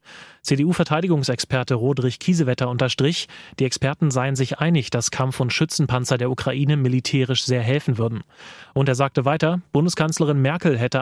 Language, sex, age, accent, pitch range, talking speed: German, male, 30-49, German, 130-150 Hz, 140 wpm